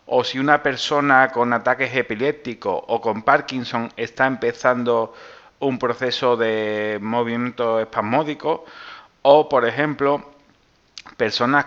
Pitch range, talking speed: 110-130 Hz, 110 wpm